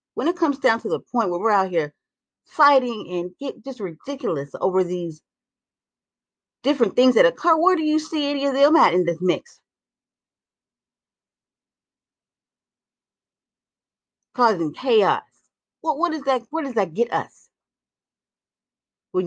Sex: female